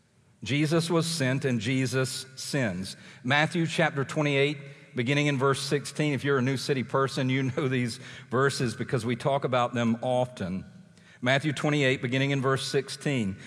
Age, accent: 50-69, American